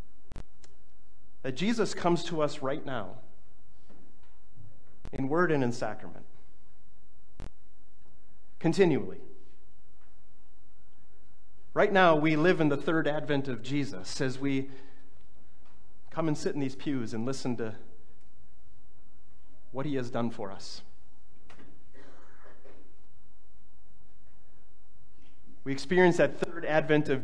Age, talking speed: 30-49, 100 wpm